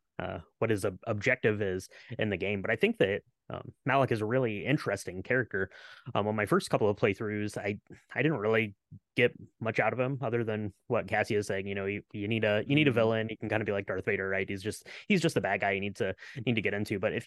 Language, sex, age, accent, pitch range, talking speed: English, male, 20-39, American, 100-115 Hz, 270 wpm